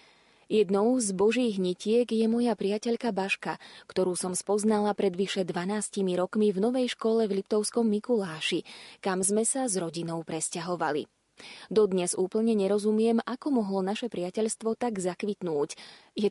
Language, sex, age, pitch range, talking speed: Slovak, female, 20-39, 185-230 Hz, 135 wpm